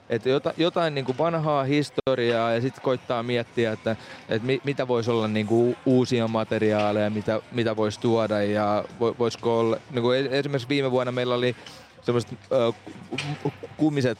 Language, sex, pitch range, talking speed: Finnish, male, 105-120 Hz, 140 wpm